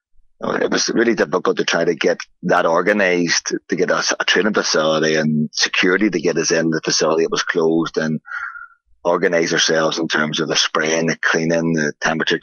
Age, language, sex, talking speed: 30-49, English, male, 190 wpm